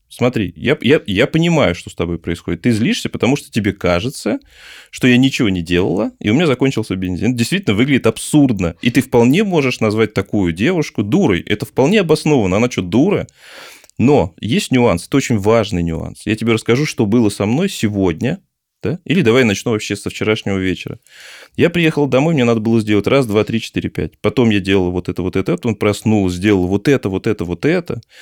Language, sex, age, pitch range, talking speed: Russian, male, 20-39, 95-130 Hz, 195 wpm